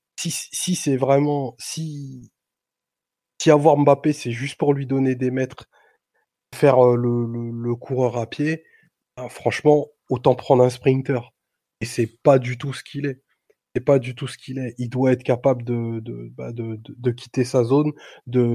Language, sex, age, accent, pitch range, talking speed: French, male, 20-39, French, 120-135 Hz, 185 wpm